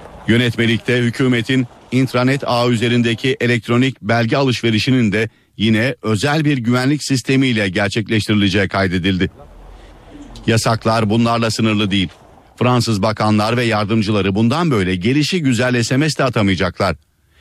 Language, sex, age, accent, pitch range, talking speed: Turkish, male, 50-69, native, 105-130 Hz, 105 wpm